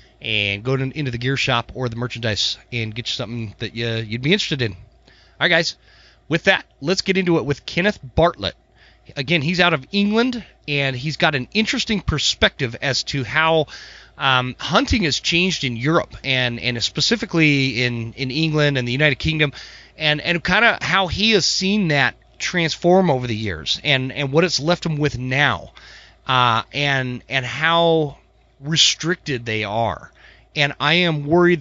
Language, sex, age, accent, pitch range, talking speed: English, male, 30-49, American, 125-165 Hz, 175 wpm